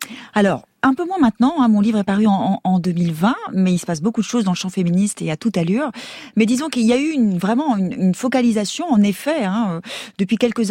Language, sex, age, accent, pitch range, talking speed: French, female, 30-49, French, 185-245 Hz, 245 wpm